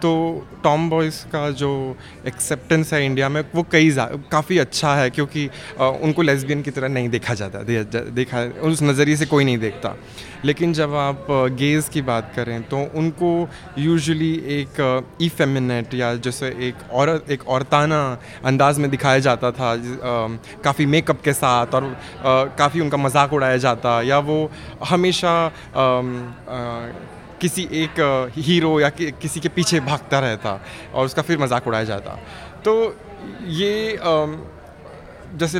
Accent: native